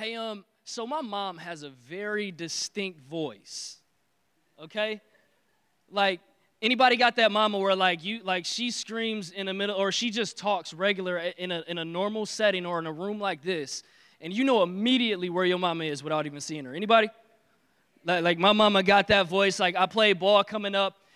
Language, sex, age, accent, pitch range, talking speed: English, male, 20-39, American, 185-225 Hz, 195 wpm